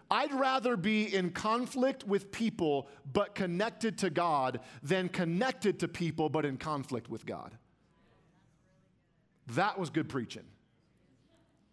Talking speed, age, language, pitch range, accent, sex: 125 wpm, 40-59, English, 135-195 Hz, American, male